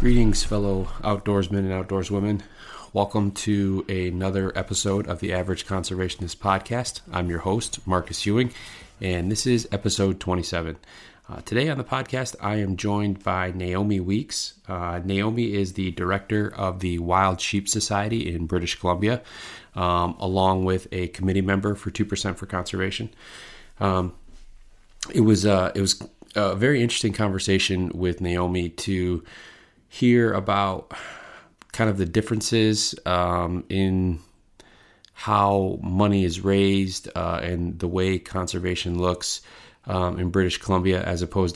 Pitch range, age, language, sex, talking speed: 90-100 Hz, 30-49, English, male, 135 wpm